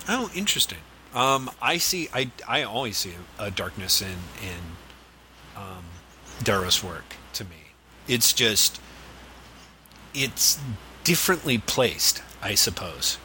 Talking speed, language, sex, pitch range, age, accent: 115 wpm, English, male, 90-115 Hz, 30-49, American